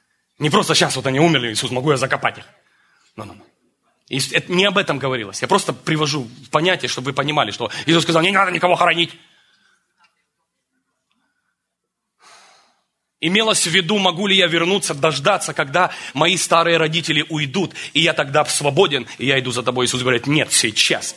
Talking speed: 160 wpm